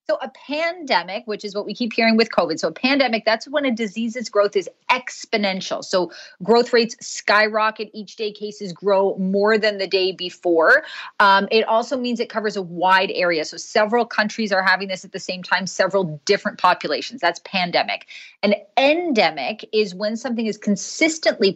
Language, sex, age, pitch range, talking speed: English, female, 30-49, 185-225 Hz, 180 wpm